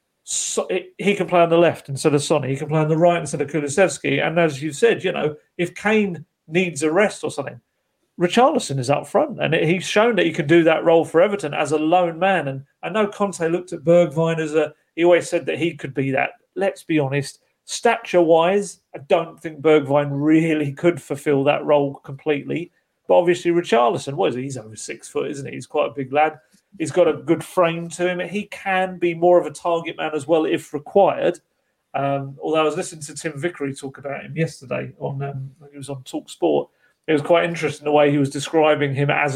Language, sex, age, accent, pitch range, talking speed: English, male, 40-59, British, 145-175 Hz, 230 wpm